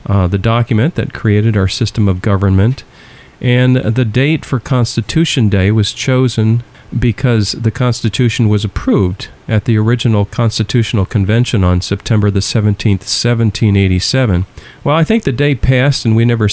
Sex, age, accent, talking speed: male, 40-59, American, 150 wpm